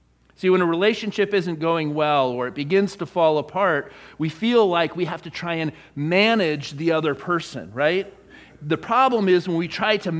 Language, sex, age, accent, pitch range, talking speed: English, male, 40-59, American, 160-210 Hz, 195 wpm